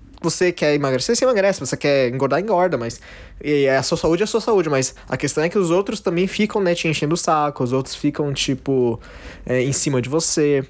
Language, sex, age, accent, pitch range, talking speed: Portuguese, male, 20-39, Brazilian, 120-170 Hz, 230 wpm